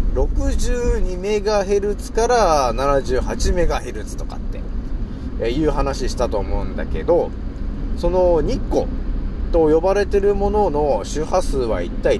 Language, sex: Japanese, male